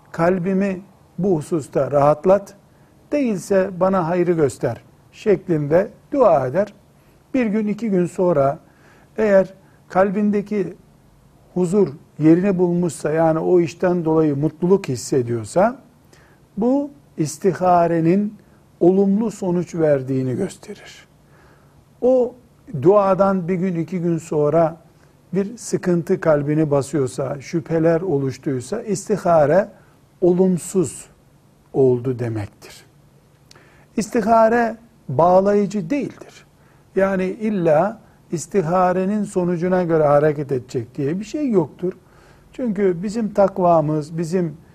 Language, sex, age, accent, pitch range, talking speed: Turkish, male, 60-79, native, 155-195 Hz, 90 wpm